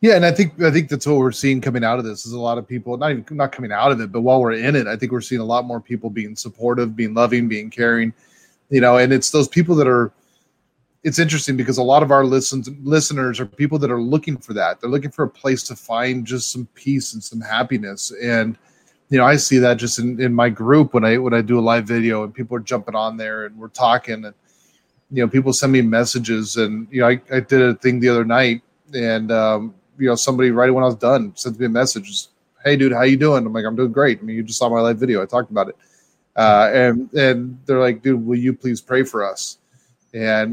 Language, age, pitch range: English, 30-49, 115-135 Hz